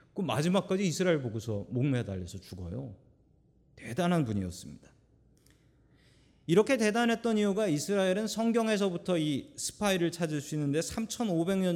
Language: Korean